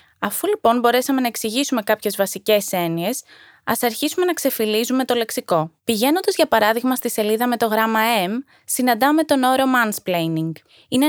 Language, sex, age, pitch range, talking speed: Greek, female, 20-39, 195-270 Hz, 150 wpm